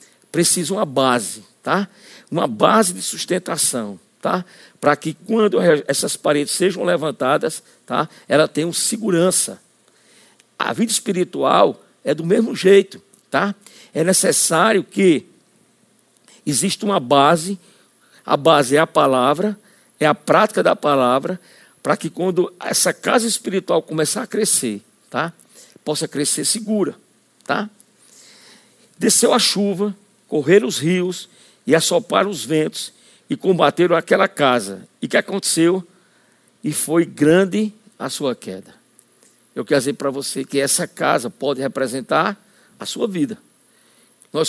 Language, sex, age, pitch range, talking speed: Portuguese, male, 60-79, 145-205 Hz, 120 wpm